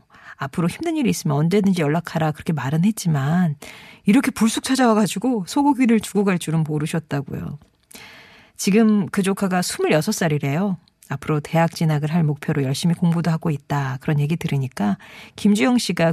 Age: 40-59